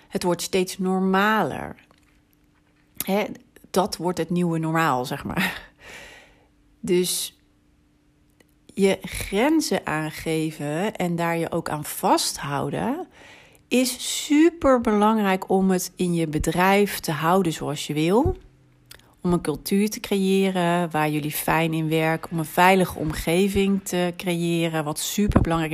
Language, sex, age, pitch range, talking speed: Dutch, female, 40-59, 165-205 Hz, 125 wpm